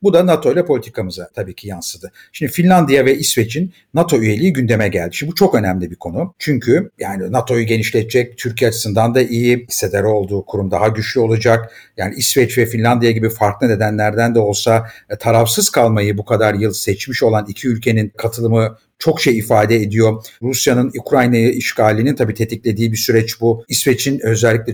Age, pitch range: 50-69, 110-140 Hz